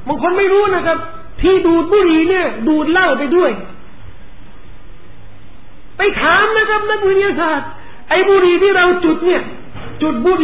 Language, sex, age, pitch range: Thai, male, 40-59, 260-355 Hz